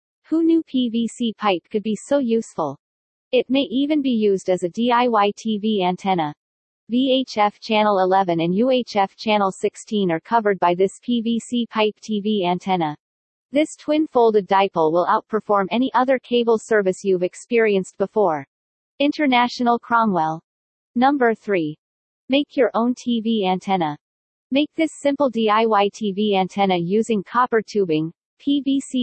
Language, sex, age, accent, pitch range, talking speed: English, female, 40-59, American, 190-245 Hz, 130 wpm